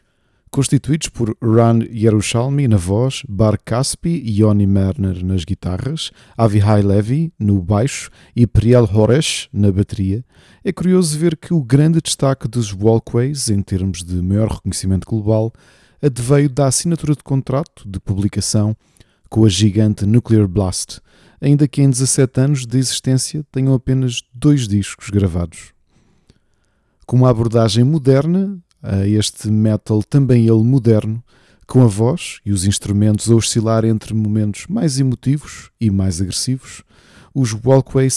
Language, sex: Portuguese, male